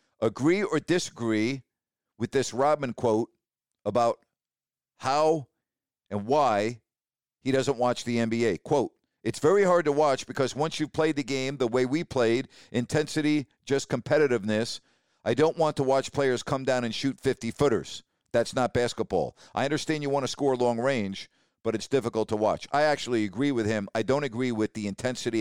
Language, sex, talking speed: English, male, 170 wpm